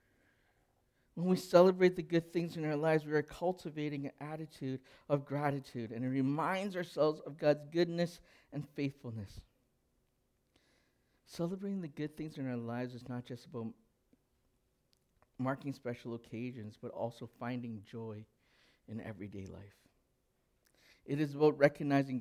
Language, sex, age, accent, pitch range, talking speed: English, male, 60-79, American, 115-145 Hz, 135 wpm